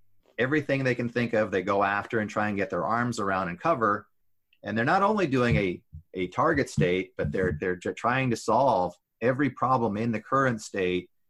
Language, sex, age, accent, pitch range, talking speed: English, male, 30-49, American, 100-115 Hz, 200 wpm